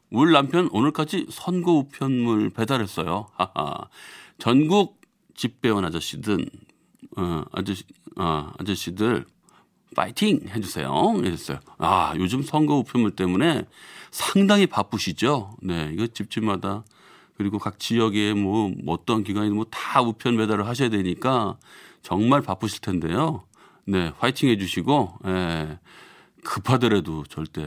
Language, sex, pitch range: Korean, male, 95-135 Hz